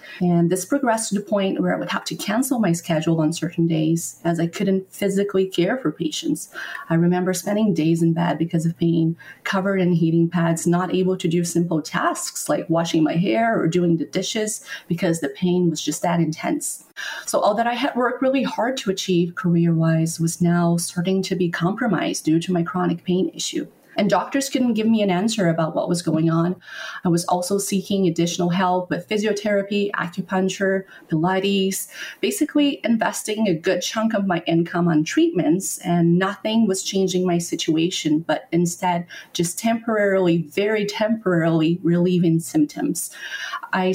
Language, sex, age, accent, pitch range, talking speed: English, female, 30-49, American, 170-210 Hz, 175 wpm